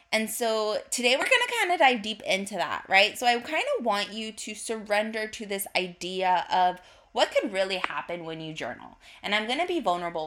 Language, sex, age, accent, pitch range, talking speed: English, female, 20-39, American, 170-225 Hz, 220 wpm